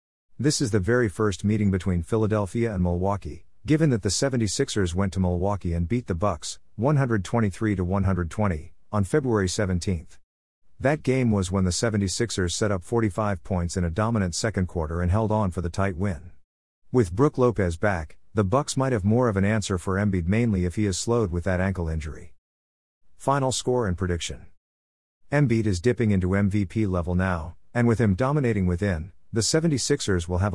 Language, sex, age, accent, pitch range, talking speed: English, male, 50-69, American, 85-110 Hz, 175 wpm